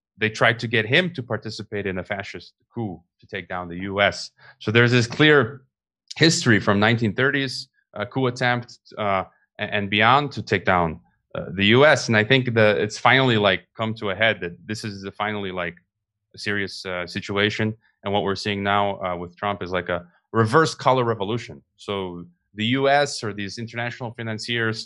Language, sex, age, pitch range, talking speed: Dutch, male, 30-49, 95-115 Hz, 185 wpm